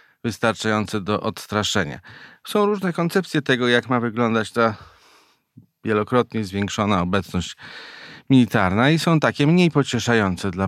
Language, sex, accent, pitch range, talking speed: Polish, male, native, 105-130 Hz, 120 wpm